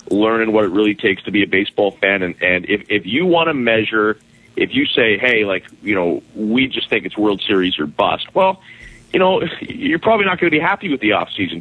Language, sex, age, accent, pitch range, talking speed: English, male, 30-49, American, 110-170 Hz, 240 wpm